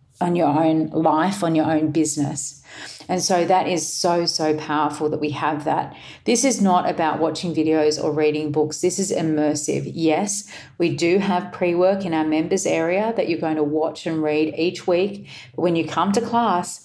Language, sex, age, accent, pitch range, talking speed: English, female, 40-59, Australian, 150-175 Hz, 190 wpm